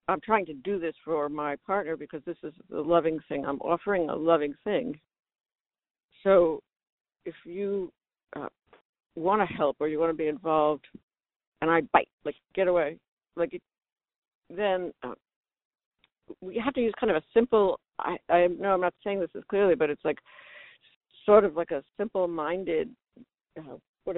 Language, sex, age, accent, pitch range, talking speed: English, female, 70-89, American, 155-195 Hz, 165 wpm